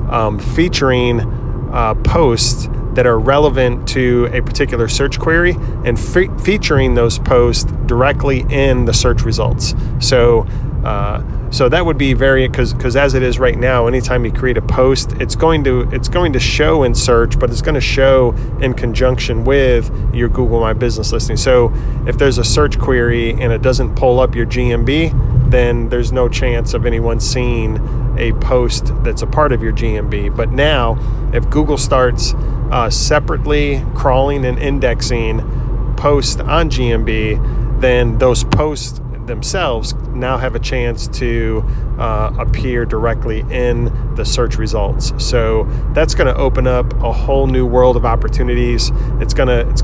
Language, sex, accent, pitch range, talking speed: English, male, American, 115-130 Hz, 160 wpm